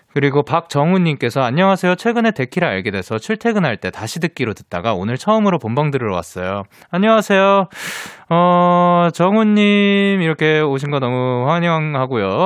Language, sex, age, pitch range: Korean, male, 20-39, 110-175 Hz